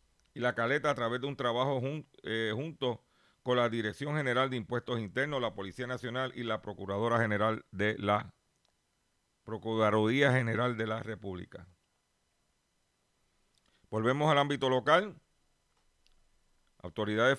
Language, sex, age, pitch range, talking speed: Spanish, male, 50-69, 110-145 Hz, 130 wpm